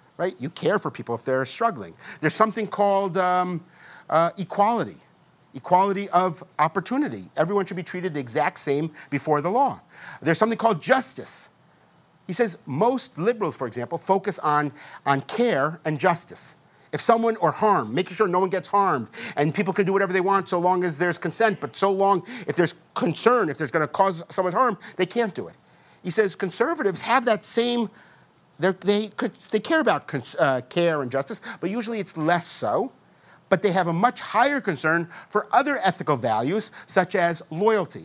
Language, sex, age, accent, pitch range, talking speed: English, male, 50-69, American, 165-215 Hz, 180 wpm